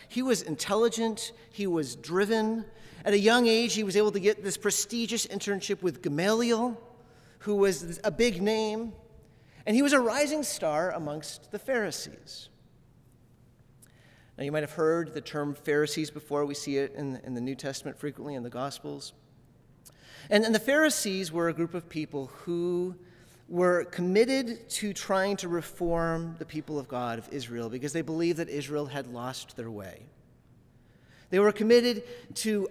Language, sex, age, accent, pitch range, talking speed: English, male, 30-49, American, 145-220 Hz, 165 wpm